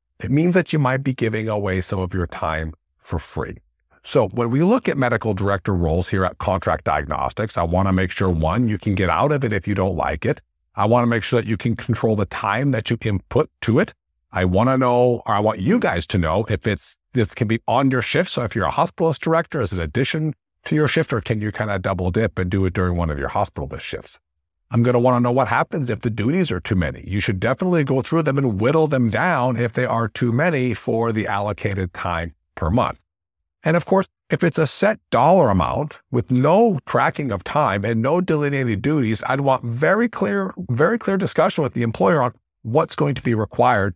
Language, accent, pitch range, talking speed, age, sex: English, American, 95-130 Hz, 240 wpm, 50-69, male